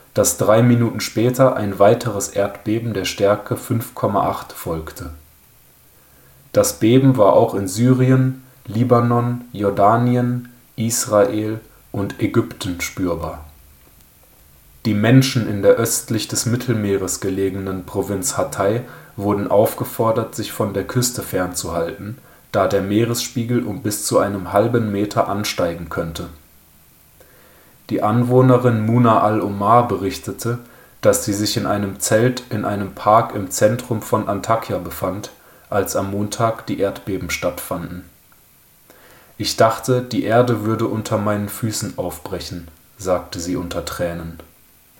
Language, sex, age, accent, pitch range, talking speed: German, male, 30-49, German, 95-120 Hz, 120 wpm